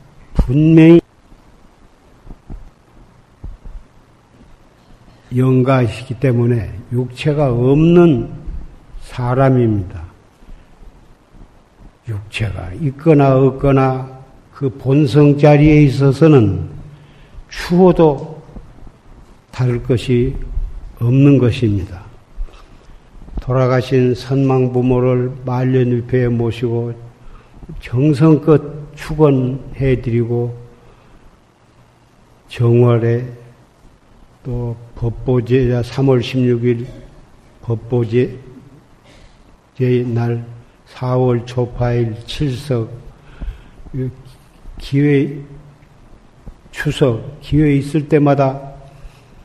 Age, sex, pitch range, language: 50-69, male, 120-140 Hz, Korean